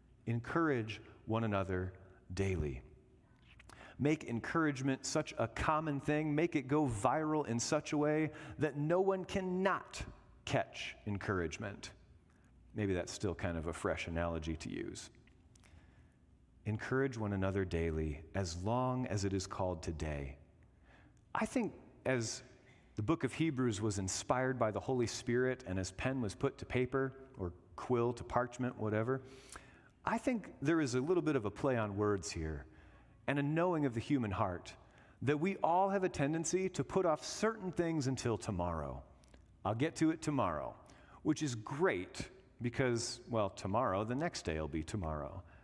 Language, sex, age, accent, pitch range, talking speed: English, male, 40-59, American, 100-150 Hz, 160 wpm